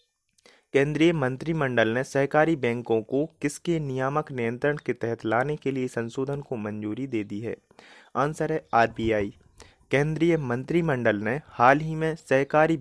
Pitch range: 115-150 Hz